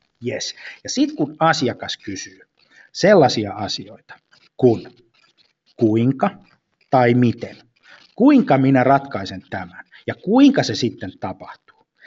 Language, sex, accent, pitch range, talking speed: Finnish, male, native, 115-160 Hz, 105 wpm